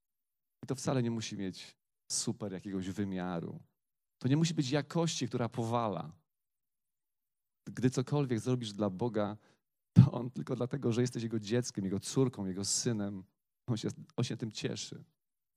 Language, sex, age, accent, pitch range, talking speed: Polish, male, 30-49, native, 115-165 Hz, 150 wpm